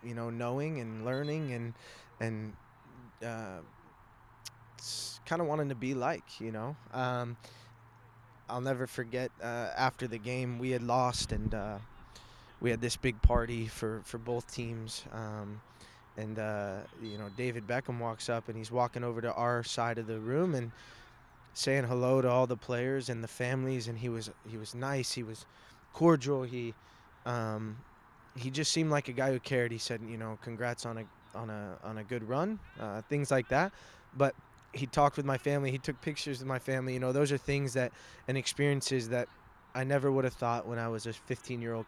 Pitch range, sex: 115-130 Hz, male